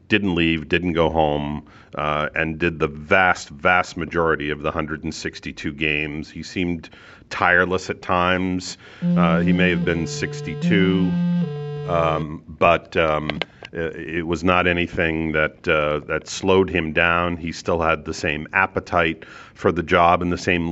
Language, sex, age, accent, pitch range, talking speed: English, male, 40-59, American, 80-95 Hz, 155 wpm